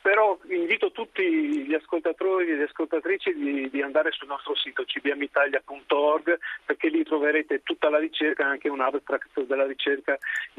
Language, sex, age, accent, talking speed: Italian, male, 40-59, native, 155 wpm